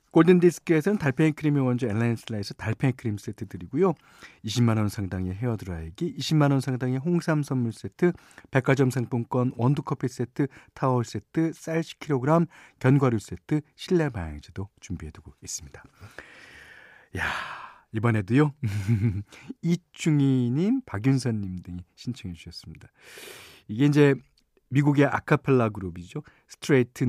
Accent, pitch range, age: native, 105-160 Hz, 40-59